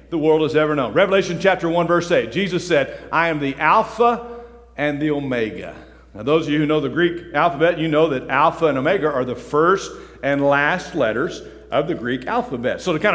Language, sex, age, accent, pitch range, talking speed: English, male, 50-69, American, 150-220 Hz, 215 wpm